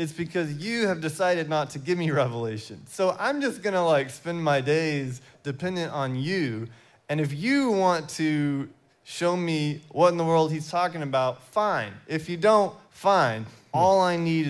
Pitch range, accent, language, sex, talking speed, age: 135-175 Hz, American, English, male, 180 wpm, 20-39